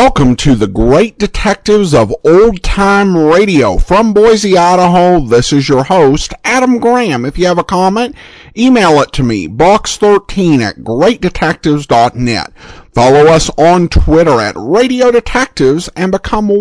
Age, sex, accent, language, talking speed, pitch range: 50-69, male, American, English, 140 wpm, 135-210 Hz